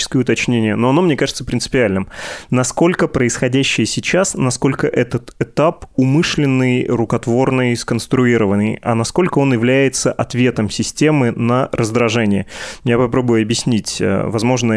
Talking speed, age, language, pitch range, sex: 110 wpm, 20-39, Russian, 115-140 Hz, male